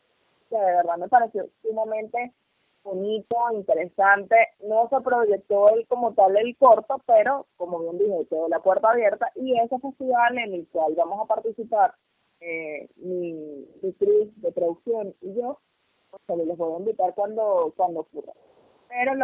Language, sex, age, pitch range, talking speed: Spanish, female, 20-39, 190-250 Hz, 160 wpm